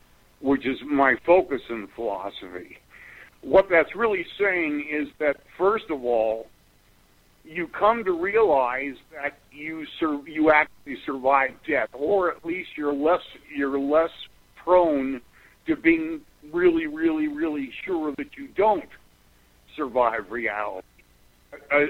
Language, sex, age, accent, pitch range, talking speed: English, male, 60-79, American, 130-220 Hz, 125 wpm